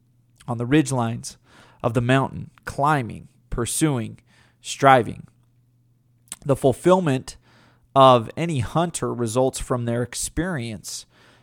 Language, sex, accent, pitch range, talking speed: English, male, American, 120-150 Hz, 100 wpm